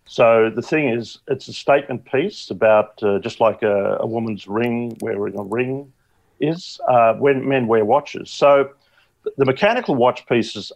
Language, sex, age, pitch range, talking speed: English, male, 50-69, 100-125 Hz, 165 wpm